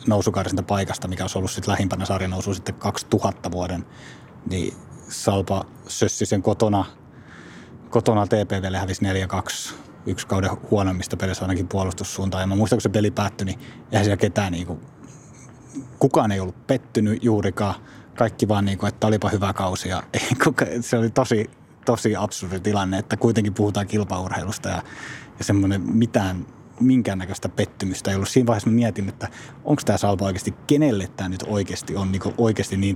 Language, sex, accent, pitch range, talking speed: Finnish, male, native, 95-115 Hz, 155 wpm